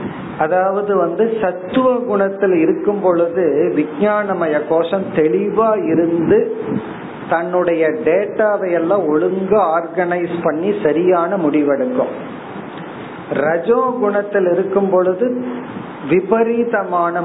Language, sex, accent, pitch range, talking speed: Tamil, male, native, 155-220 Hz, 35 wpm